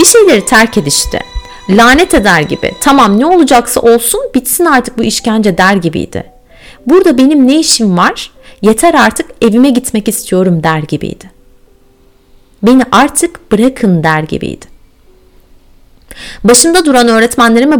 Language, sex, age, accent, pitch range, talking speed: Turkish, female, 30-49, native, 195-285 Hz, 125 wpm